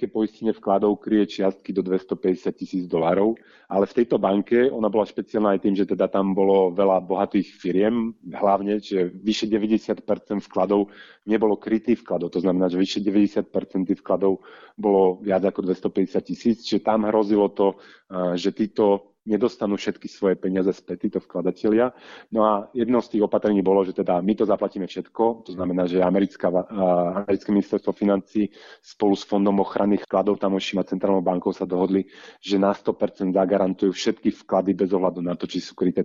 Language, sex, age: Slovak, male, 30-49